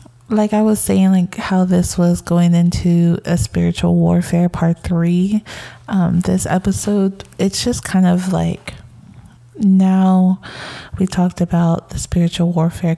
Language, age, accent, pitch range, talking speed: English, 20-39, American, 165-175 Hz, 140 wpm